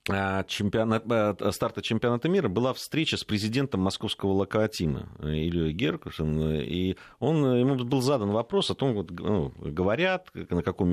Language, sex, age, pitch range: Russian, male, 40-59, 90-130 Hz